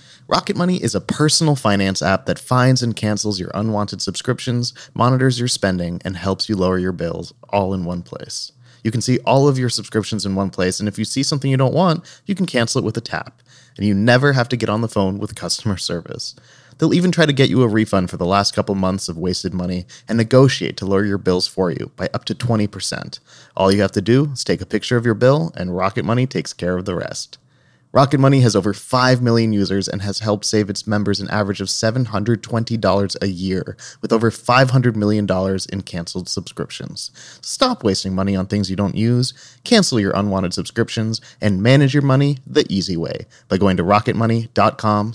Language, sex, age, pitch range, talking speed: English, male, 30-49, 95-125 Hz, 215 wpm